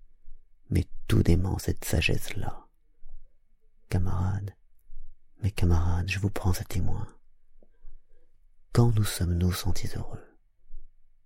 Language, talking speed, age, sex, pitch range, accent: French, 95 wpm, 40-59, male, 90-105 Hz, French